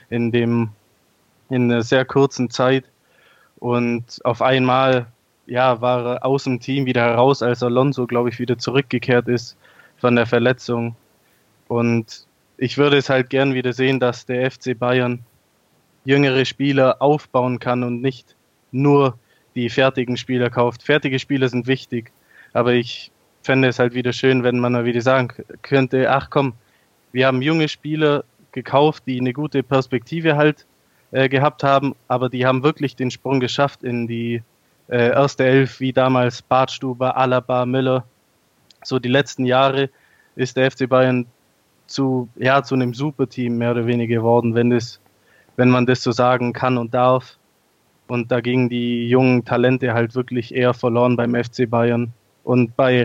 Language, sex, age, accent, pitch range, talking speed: German, male, 20-39, German, 120-130 Hz, 160 wpm